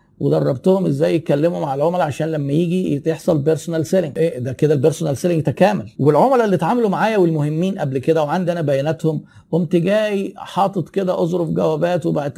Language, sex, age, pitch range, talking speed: Arabic, male, 50-69, 150-185 Hz, 165 wpm